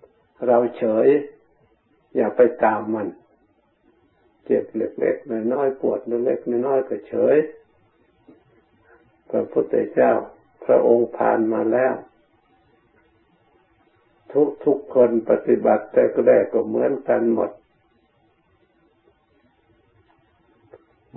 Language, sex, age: Thai, male, 60-79